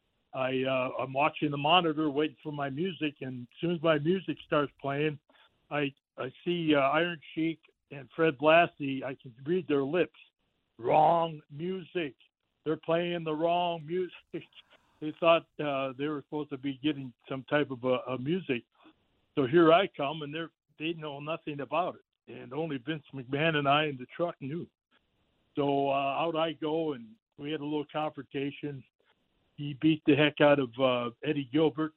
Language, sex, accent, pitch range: English, male, American, 140-165 Hz